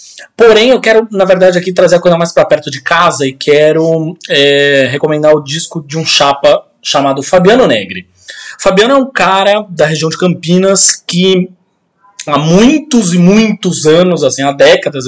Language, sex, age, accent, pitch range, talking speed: Portuguese, male, 20-39, Brazilian, 140-195 Hz, 170 wpm